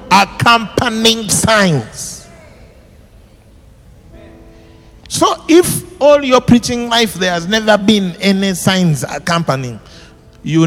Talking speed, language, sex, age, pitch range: 90 wpm, English, male, 50-69, 150-220 Hz